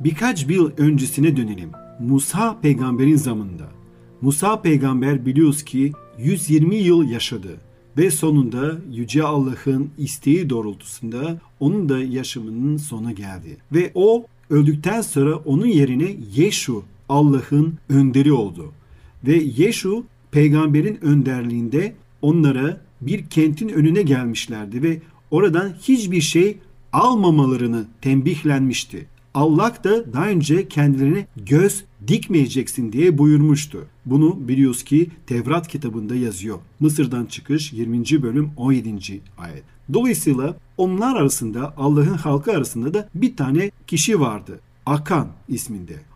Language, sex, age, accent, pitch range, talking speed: Turkish, male, 40-59, native, 125-165 Hz, 110 wpm